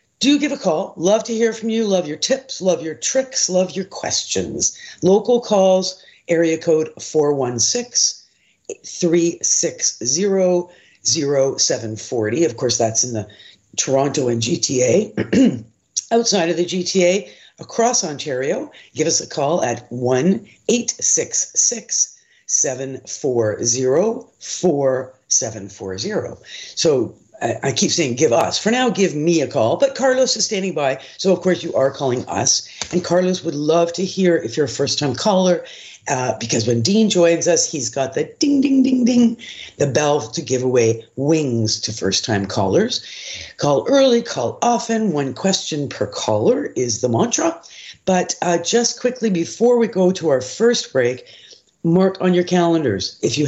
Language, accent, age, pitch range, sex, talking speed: English, American, 50-69, 135-215 Hz, female, 145 wpm